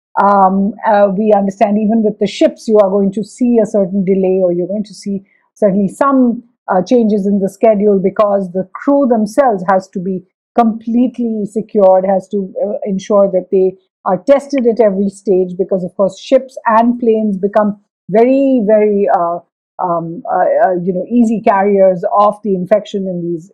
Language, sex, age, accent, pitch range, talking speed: English, female, 50-69, Indian, 190-235 Hz, 175 wpm